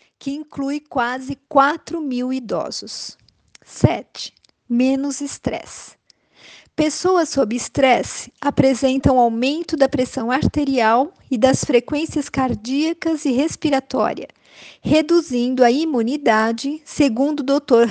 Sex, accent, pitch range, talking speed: female, Brazilian, 250-295 Hz, 95 wpm